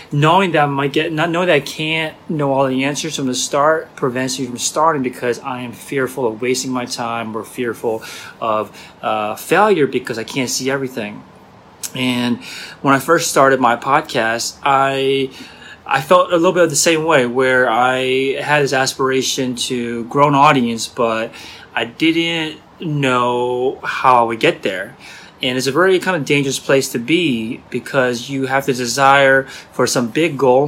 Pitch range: 120-140 Hz